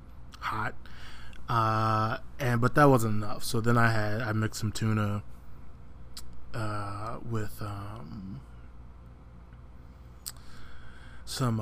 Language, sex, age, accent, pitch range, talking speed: English, male, 20-39, American, 85-115 Hz, 100 wpm